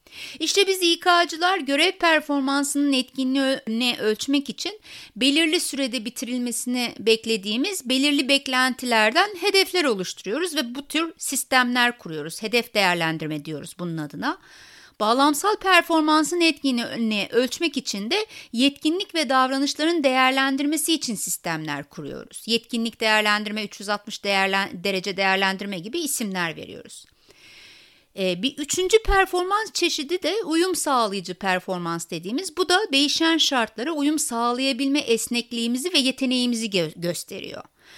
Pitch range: 200-305 Hz